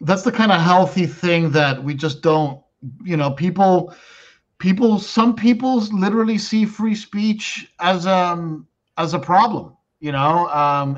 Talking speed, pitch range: 155 wpm, 140-165 Hz